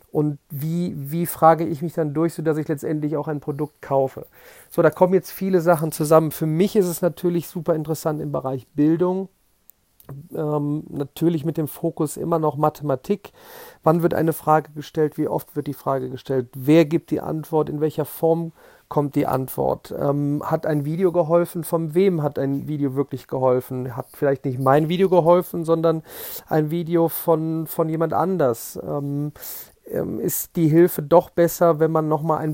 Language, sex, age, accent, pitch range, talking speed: German, male, 40-59, German, 150-170 Hz, 180 wpm